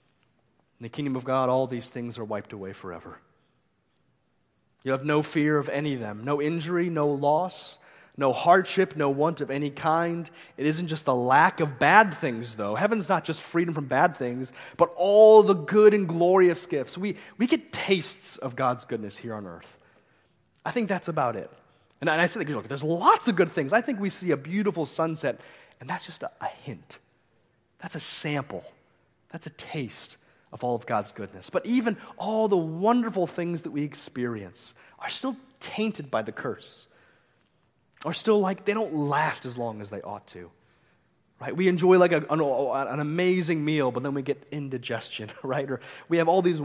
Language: English